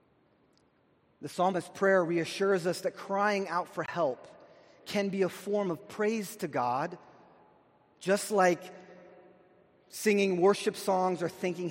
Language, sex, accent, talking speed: English, male, American, 130 wpm